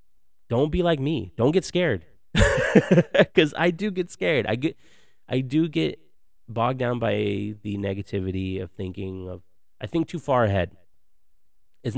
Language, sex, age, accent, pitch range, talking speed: English, male, 30-49, American, 100-155 Hz, 155 wpm